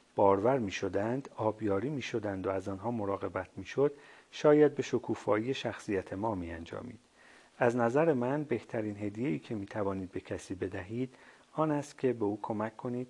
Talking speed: 155 wpm